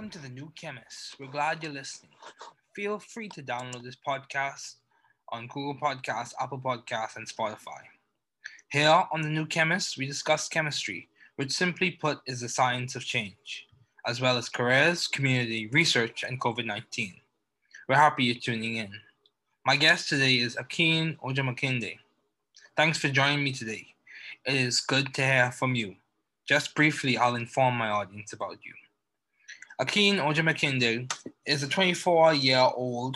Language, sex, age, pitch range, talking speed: English, male, 20-39, 125-150 Hz, 150 wpm